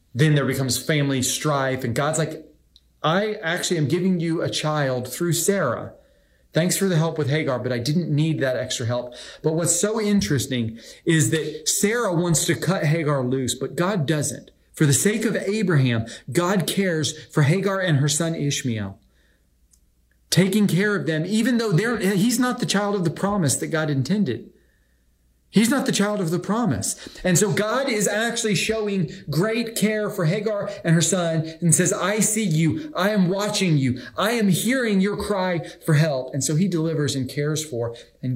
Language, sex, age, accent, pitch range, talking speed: English, male, 30-49, American, 135-200 Hz, 185 wpm